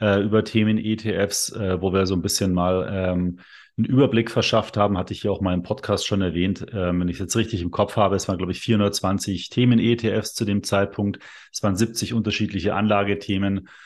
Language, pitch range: German, 95-110 Hz